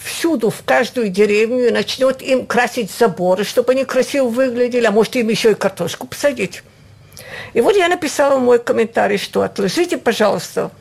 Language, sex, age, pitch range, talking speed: Russian, female, 50-69, 195-265 Hz, 160 wpm